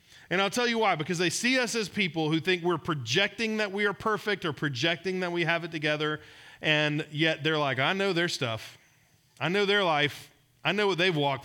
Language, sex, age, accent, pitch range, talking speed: English, male, 40-59, American, 135-180 Hz, 225 wpm